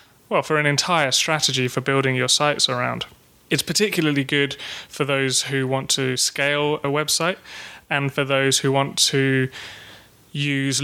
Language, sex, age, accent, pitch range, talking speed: English, male, 20-39, British, 130-150 Hz, 155 wpm